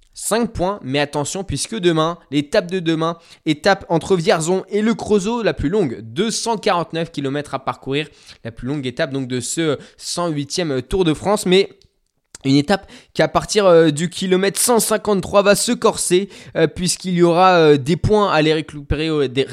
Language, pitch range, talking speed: French, 145-185 Hz, 180 wpm